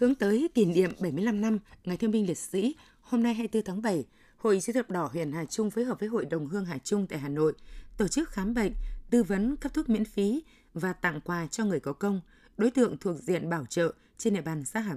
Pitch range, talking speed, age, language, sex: 170-225 Hz, 250 wpm, 20-39, Vietnamese, female